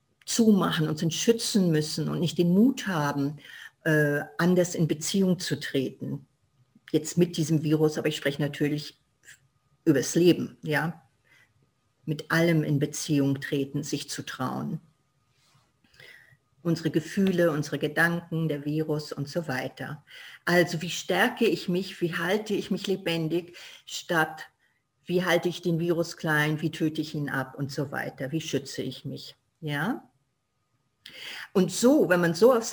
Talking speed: 145 wpm